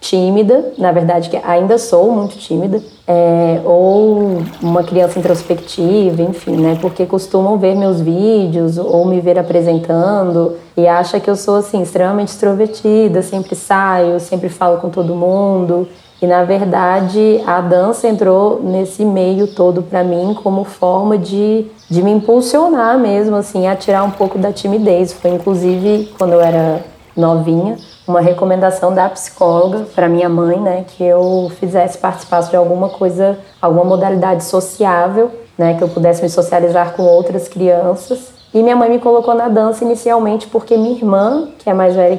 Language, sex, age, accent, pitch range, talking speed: Portuguese, female, 20-39, Brazilian, 175-200 Hz, 160 wpm